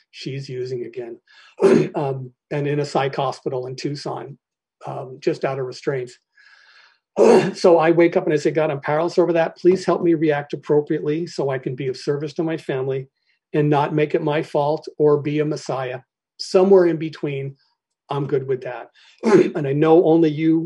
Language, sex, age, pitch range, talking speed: English, male, 50-69, 135-170 Hz, 185 wpm